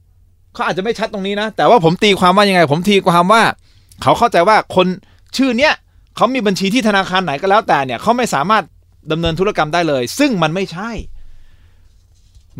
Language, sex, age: Thai, male, 30-49